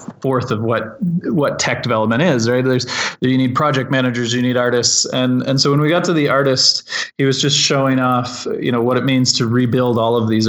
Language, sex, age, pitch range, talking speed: English, male, 30-49, 115-135 Hz, 235 wpm